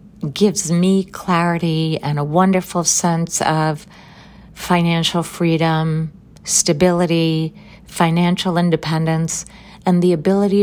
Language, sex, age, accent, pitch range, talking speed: English, female, 50-69, American, 155-185 Hz, 90 wpm